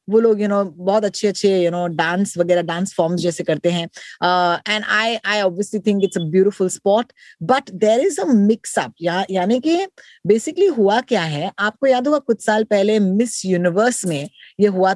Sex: female